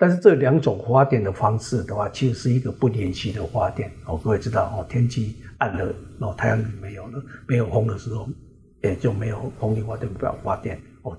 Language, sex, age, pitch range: Chinese, male, 60-79, 110-135 Hz